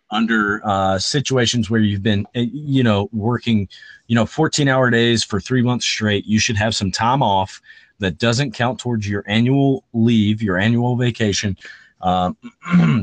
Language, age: English, 30-49